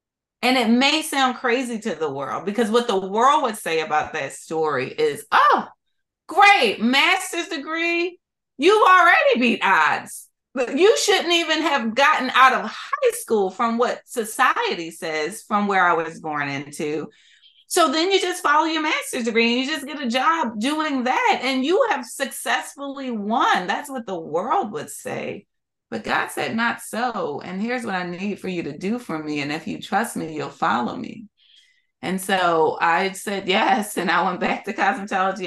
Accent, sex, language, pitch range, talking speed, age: American, female, English, 175-275 Hz, 185 wpm, 30-49